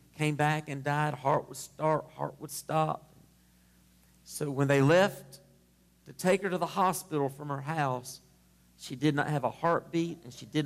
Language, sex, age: English, male, 40-59